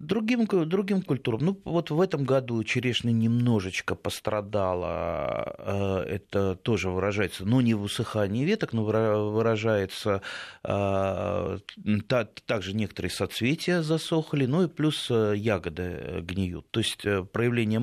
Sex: male